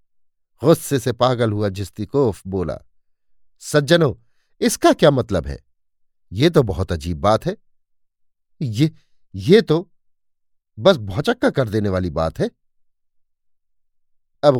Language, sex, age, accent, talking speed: Hindi, male, 50-69, native, 110 wpm